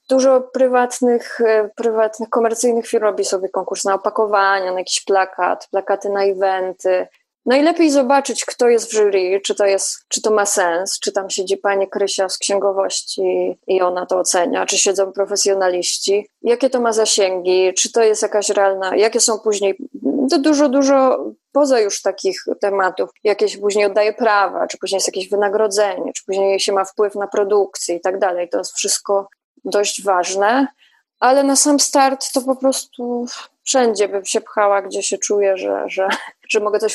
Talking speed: 170 wpm